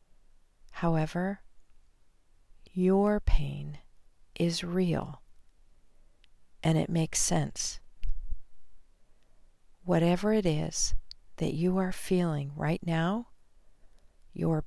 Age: 40-59